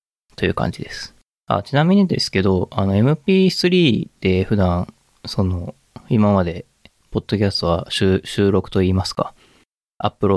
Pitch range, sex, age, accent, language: 90-120 Hz, male, 20-39, native, Japanese